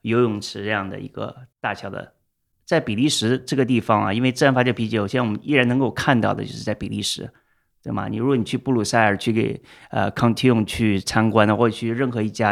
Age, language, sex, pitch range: 30-49, Chinese, male, 105-125 Hz